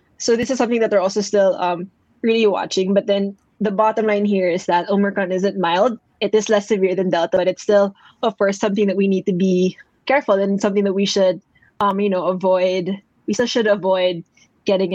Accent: Filipino